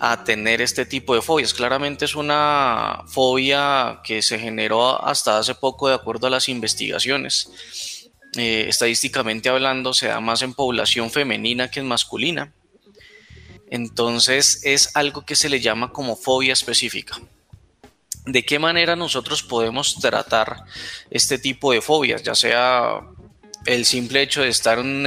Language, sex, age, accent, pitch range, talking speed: Spanish, male, 20-39, Colombian, 115-135 Hz, 150 wpm